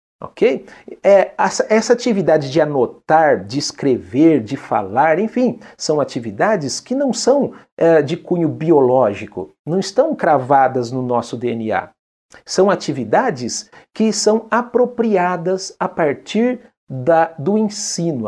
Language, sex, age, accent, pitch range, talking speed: Portuguese, male, 50-69, Brazilian, 140-215 Hz, 110 wpm